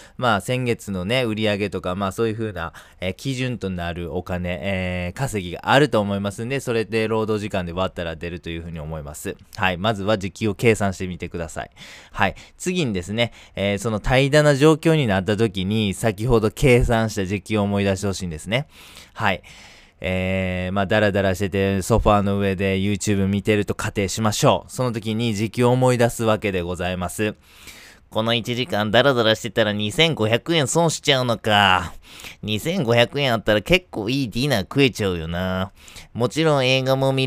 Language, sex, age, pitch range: Japanese, male, 20-39, 95-115 Hz